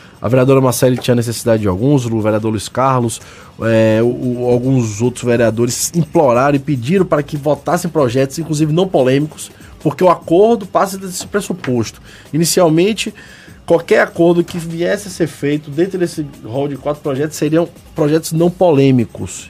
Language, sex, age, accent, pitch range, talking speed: Portuguese, male, 20-39, Brazilian, 120-155 Hz, 150 wpm